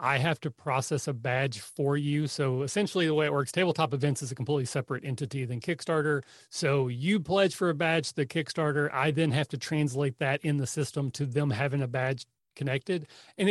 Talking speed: 215 wpm